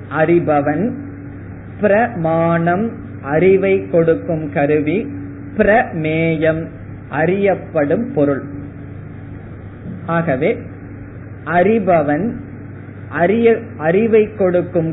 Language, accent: Tamil, native